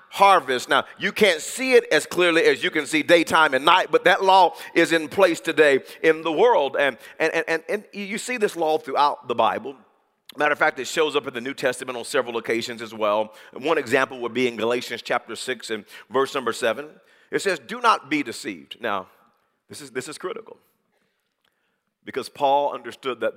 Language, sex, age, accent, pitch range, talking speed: English, male, 40-59, American, 140-205 Hz, 210 wpm